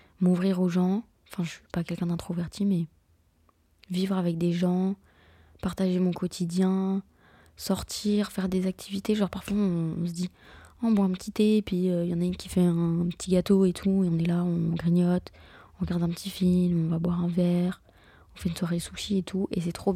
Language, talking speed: French, 225 wpm